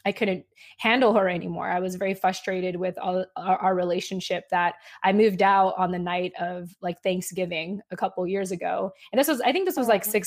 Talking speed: 210 wpm